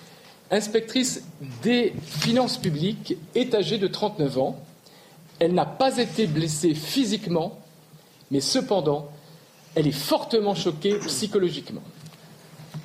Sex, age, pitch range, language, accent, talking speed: male, 50-69, 155-205 Hz, French, French, 105 wpm